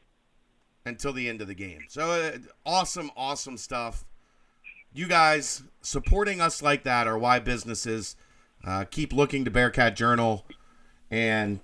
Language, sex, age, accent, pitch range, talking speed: English, male, 40-59, American, 105-140 Hz, 140 wpm